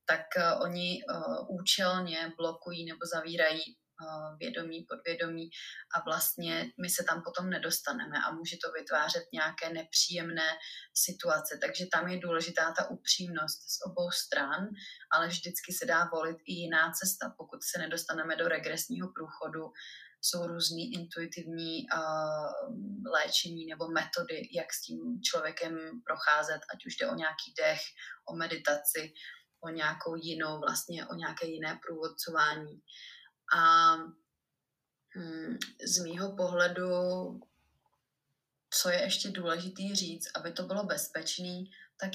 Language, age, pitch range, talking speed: Czech, 20-39, 160-180 Hz, 120 wpm